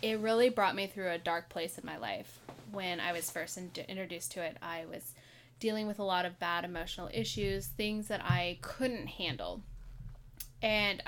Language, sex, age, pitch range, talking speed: English, female, 10-29, 130-195 Hz, 185 wpm